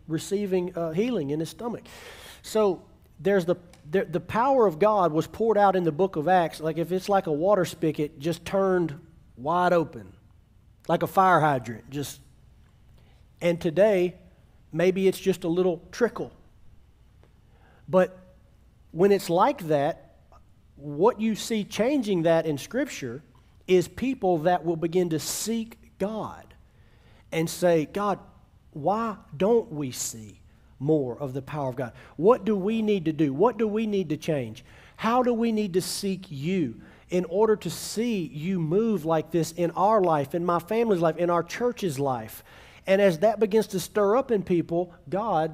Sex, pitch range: male, 150-200 Hz